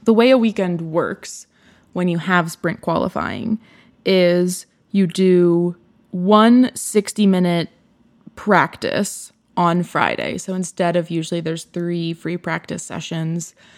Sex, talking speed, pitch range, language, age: female, 120 wpm, 170-210 Hz, English, 20-39